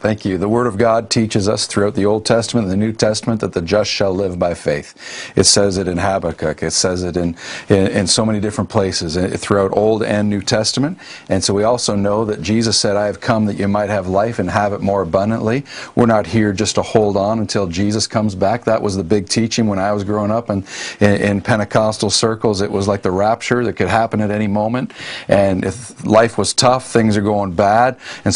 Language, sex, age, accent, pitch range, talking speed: English, male, 40-59, American, 100-120 Hz, 235 wpm